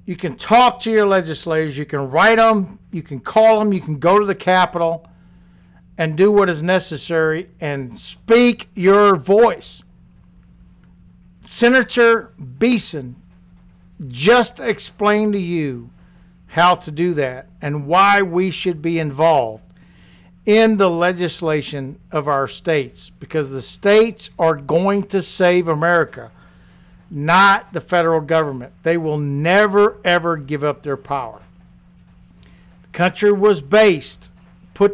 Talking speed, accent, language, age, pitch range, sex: 130 wpm, American, English, 60-79, 135-200 Hz, male